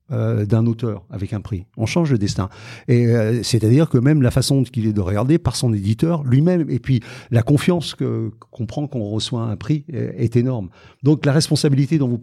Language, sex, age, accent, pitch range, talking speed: French, male, 50-69, French, 115-145 Hz, 210 wpm